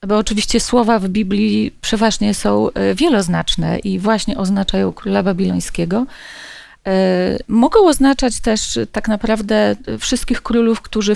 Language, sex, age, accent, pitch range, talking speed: Polish, female, 40-59, native, 200-250 Hz, 115 wpm